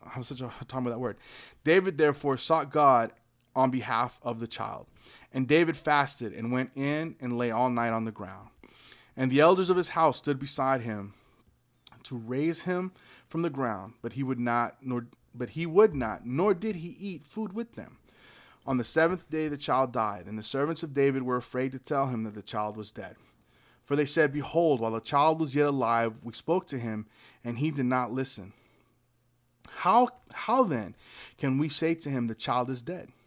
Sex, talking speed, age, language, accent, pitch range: male, 205 wpm, 30-49, English, American, 120-150 Hz